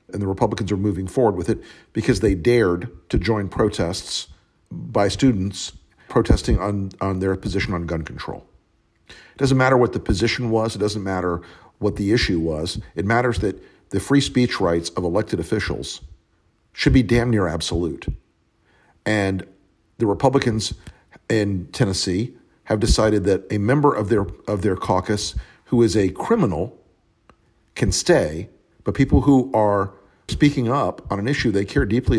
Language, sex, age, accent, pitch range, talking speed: English, male, 50-69, American, 95-120 Hz, 160 wpm